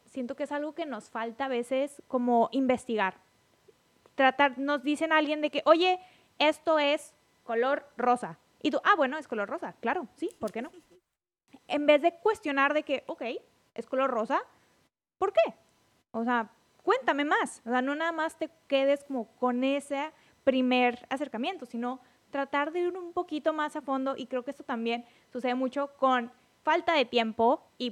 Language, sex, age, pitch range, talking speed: English, female, 20-39, 235-295 Hz, 180 wpm